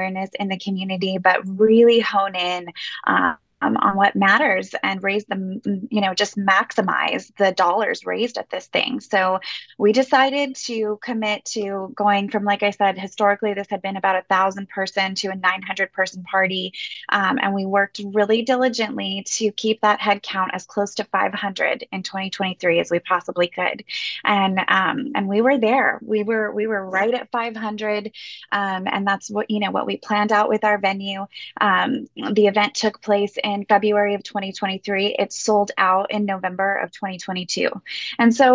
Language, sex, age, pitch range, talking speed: English, female, 20-39, 195-220 Hz, 175 wpm